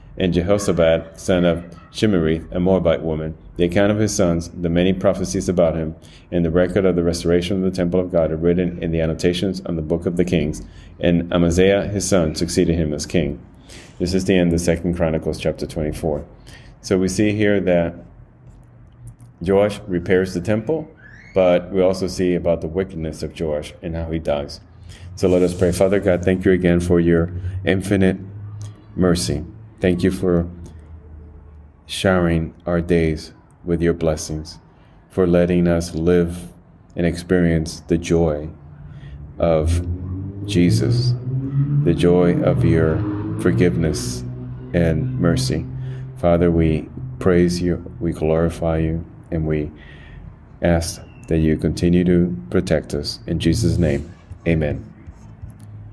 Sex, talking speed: male, 150 wpm